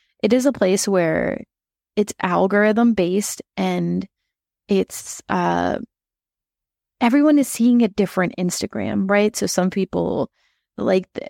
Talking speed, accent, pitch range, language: 115 wpm, American, 160-200 Hz, English